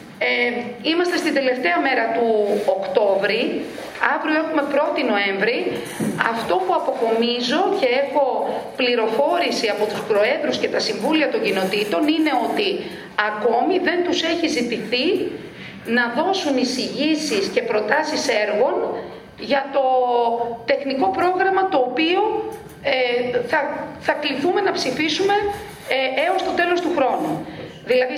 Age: 40-59